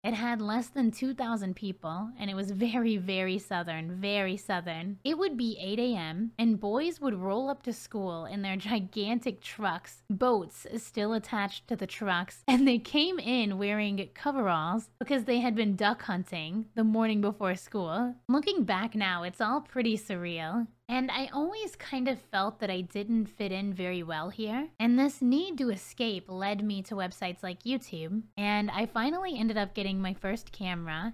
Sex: female